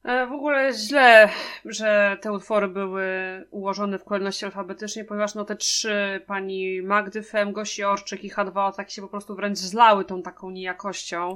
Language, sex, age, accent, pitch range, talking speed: Polish, female, 20-39, native, 190-225 Hz, 160 wpm